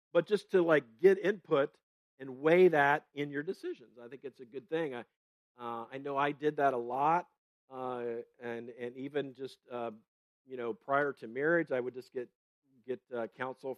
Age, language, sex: 50-69, English, male